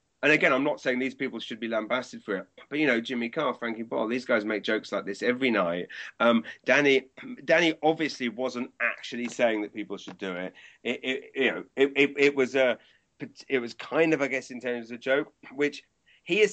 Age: 30-49